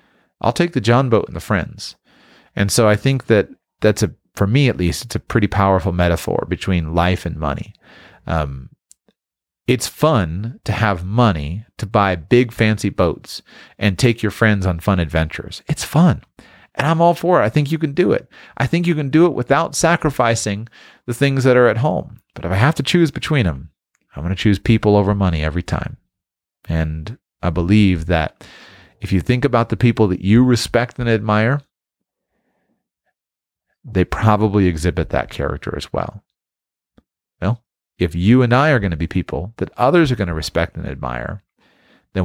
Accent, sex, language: American, male, English